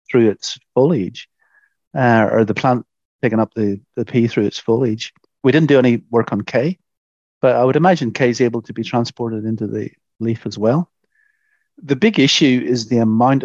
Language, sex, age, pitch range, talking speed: English, male, 40-59, 110-130 Hz, 190 wpm